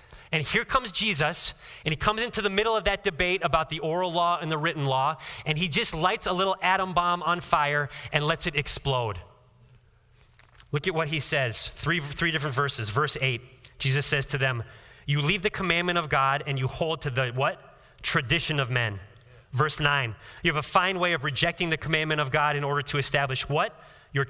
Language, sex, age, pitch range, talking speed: English, male, 30-49, 130-175 Hz, 205 wpm